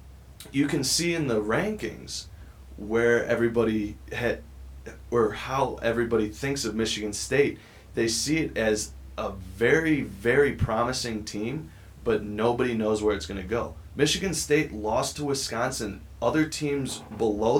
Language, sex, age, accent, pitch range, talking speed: English, male, 20-39, American, 90-115 Hz, 140 wpm